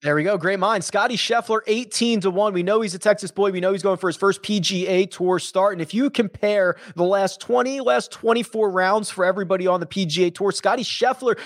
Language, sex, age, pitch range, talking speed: English, male, 20-39, 165-210 Hz, 230 wpm